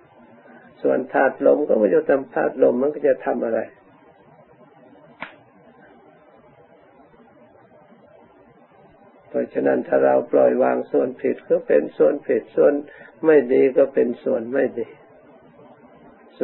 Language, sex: Thai, male